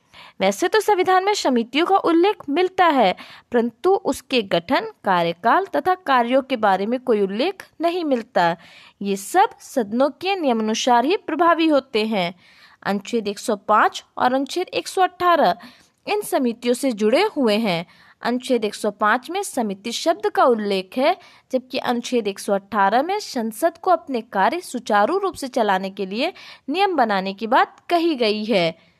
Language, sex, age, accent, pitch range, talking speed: Hindi, female, 20-39, native, 220-345 Hz, 145 wpm